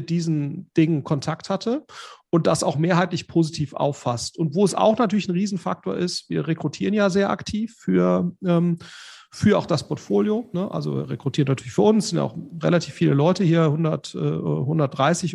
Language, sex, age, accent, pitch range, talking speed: German, male, 40-59, German, 155-190 Hz, 180 wpm